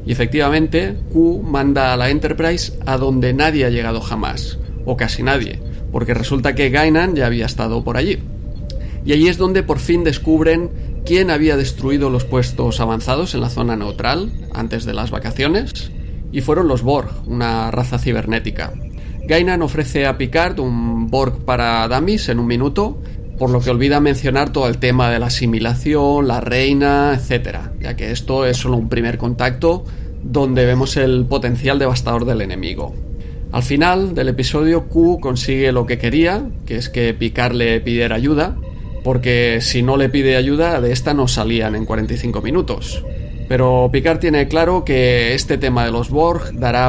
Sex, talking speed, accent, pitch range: male, 170 wpm, Spanish, 115-145 Hz